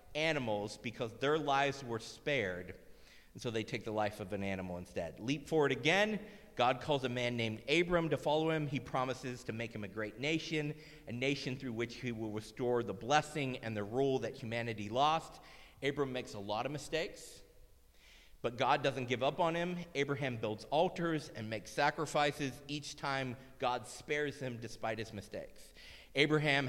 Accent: American